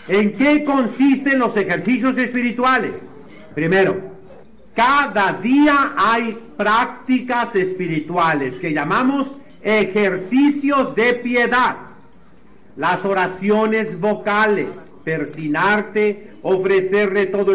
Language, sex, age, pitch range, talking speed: Spanish, male, 50-69, 180-220 Hz, 80 wpm